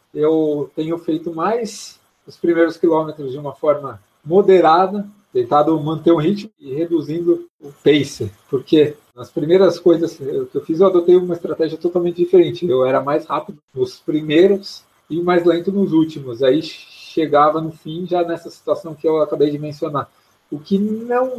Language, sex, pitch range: Portuguese, male, 150-180 Hz